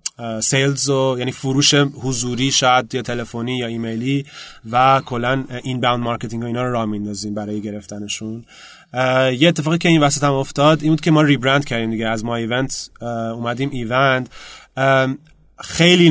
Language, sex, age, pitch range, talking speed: Persian, male, 30-49, 125-145 Hz, 160 wpm